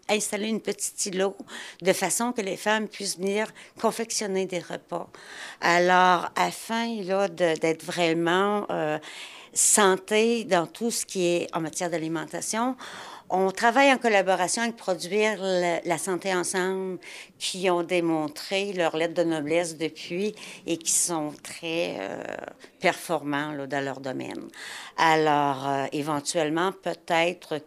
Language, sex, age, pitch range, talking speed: French, female, 60-79, 165-200 Hz, 130 wpm